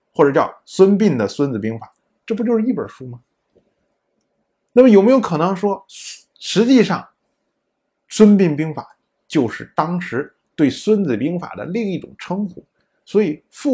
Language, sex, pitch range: Chinese, male, 140-225 Hz